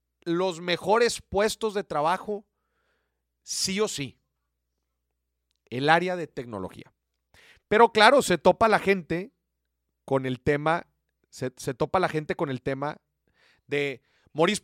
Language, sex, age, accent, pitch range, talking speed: Spanish, male, 40-59, Mexican, 135-205 Hz, 125 wpm